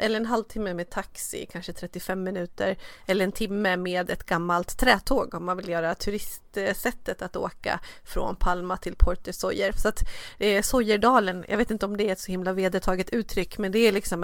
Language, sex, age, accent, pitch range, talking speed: Swedish, female, 30-49, native, 185-225 Hz, 190 wpm